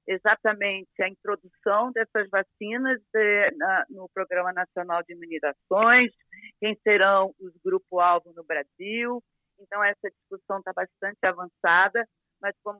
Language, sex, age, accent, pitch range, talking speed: Portuguese, female, 40-59, Brazilian, 180-215 Hz, 120 wpm